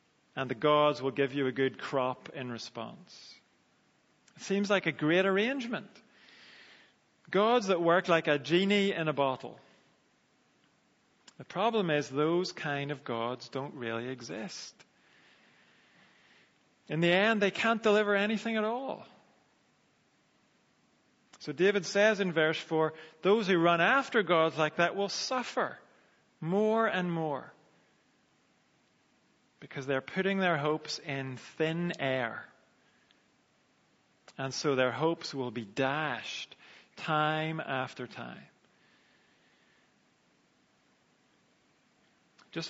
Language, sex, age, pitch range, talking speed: English, male, 40-59, 140-195 Hz, 115 wpm